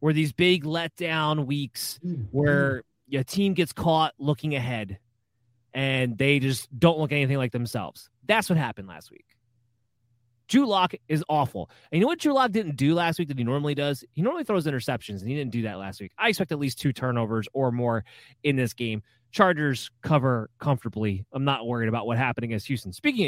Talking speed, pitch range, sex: 195 wpm, 120-155 Hz, male